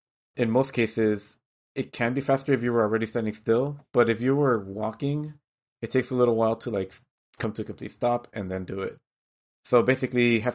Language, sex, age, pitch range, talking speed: English, male, 30-49, 105-125 Hz, 210 wpm